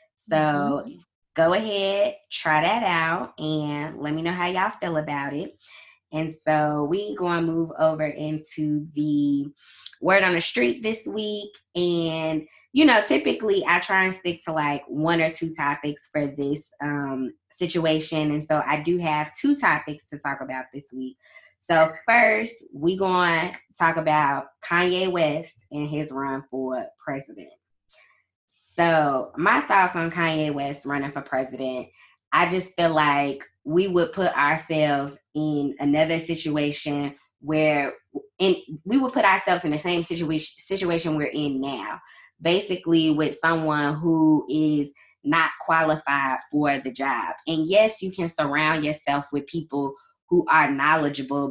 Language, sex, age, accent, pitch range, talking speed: English, female, 20-39, American, 145-175 Hz, 150 wpm